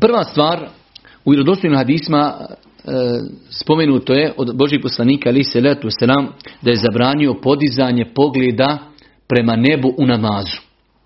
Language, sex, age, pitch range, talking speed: Croatian, male, 40-59, 130-155 Hz, 125 wpm